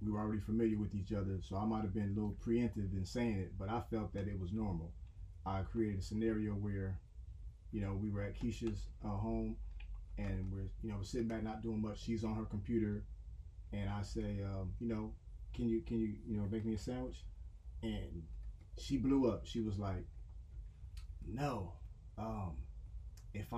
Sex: male